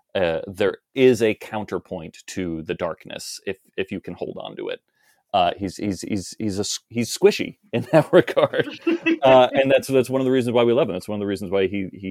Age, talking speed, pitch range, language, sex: 30-49, 235 wpm, 95-130 Hz, English, male